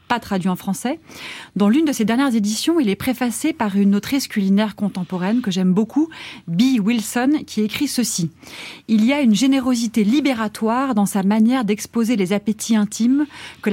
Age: 30-49